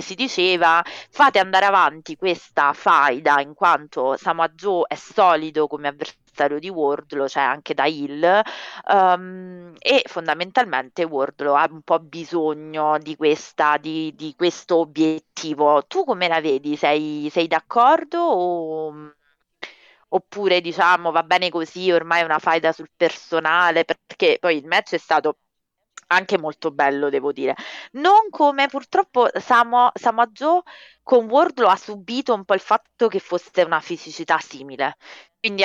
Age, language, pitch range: 30-49, Italian, 150-195 Hz